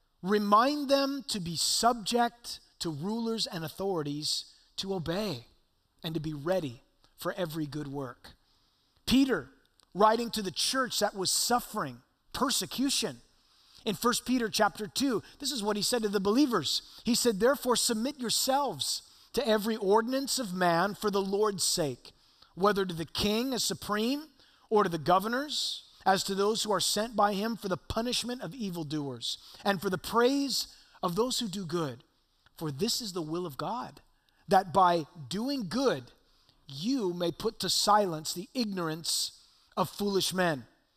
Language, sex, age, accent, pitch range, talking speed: English, male, 30-49, American, 180-245 Hz, 160 wpm